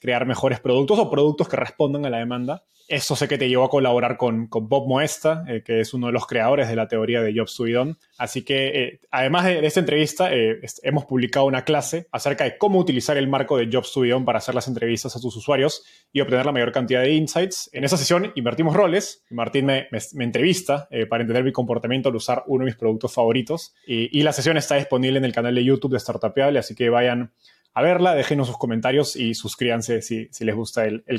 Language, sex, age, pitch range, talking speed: Spanish, male, 20-39, 115-145 Hz, 240 wpm